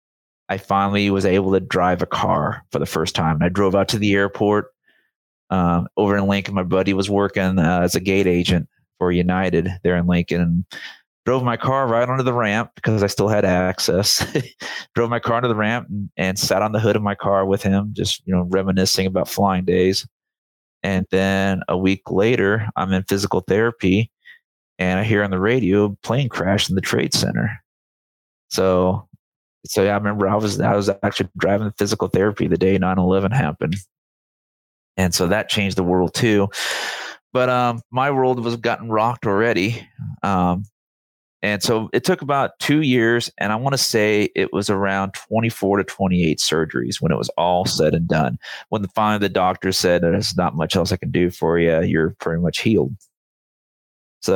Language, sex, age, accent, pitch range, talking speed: English, male, 30-49, American, 90-110 Hz, 195 wpm